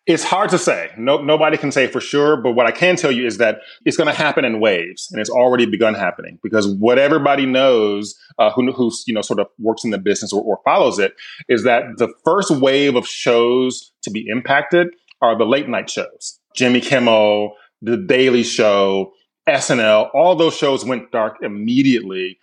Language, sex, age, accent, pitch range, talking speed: English, male, 30-49, American, 110-140 Hz, 200 wpm